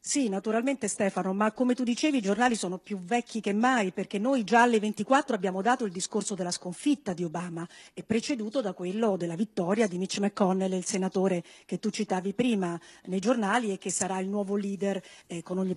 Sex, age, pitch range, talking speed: female, 50-69, 195-255 Hz, 200 wpm